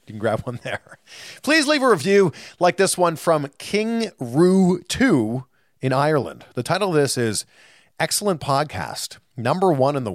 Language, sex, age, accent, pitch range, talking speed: English, male, 40-59, American, 120-180 Hz, 165 wpm